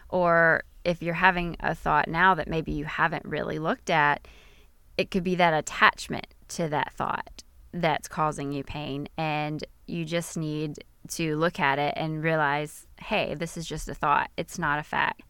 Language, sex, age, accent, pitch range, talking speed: English, female, 20-39, American, 150-170 Hz, 180 wpm